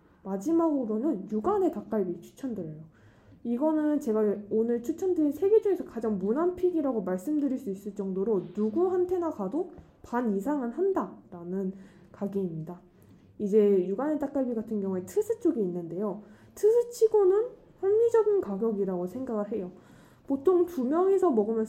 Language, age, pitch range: Korean, 20-39, 200-335 Hz